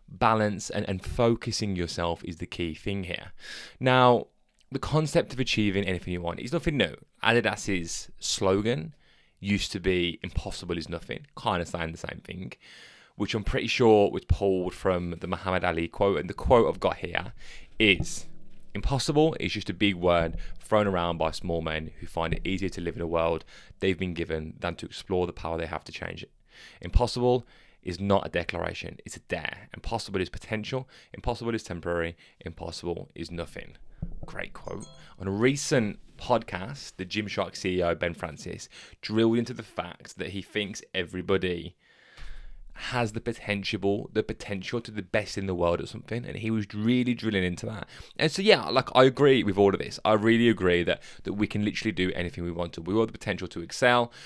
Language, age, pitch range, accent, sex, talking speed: English, 20-39, 90-115 Hz, British, male, 190 wpm